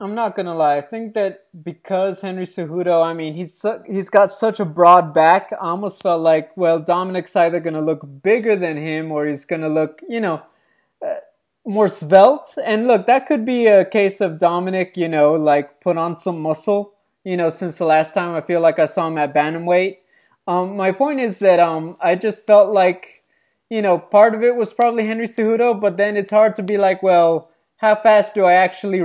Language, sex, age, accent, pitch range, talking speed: English, male, 20-39, American, 165-205 Hz, 215 wpm